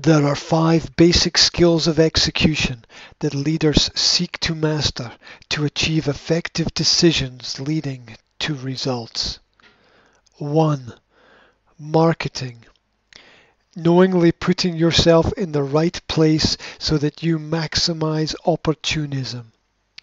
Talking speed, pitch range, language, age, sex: 100 wpm, 145-165 Hz, English, 50-69, male